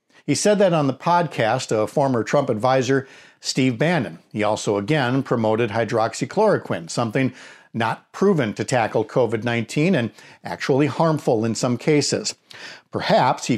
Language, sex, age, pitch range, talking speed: English, male, 50-69, 125-155 Hz, 135 wpm